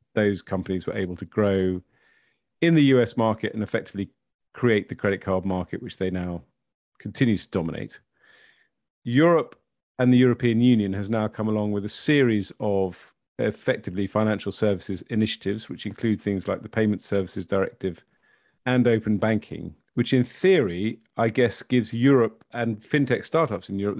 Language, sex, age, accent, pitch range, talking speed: English, male, 40-59, British, 95-120 Hz, 160 wpm